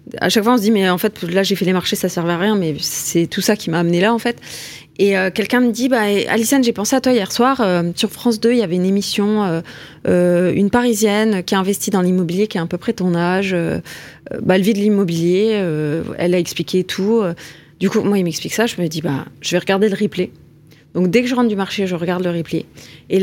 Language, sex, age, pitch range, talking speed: French, female, 20-39, 170-220 Hz, 275 wpm